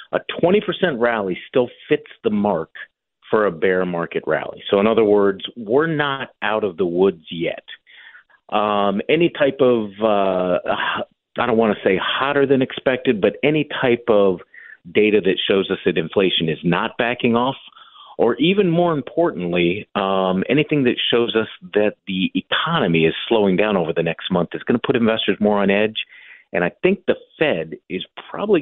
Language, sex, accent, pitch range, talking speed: English, male, American, 90-130 Hz, 175 wpm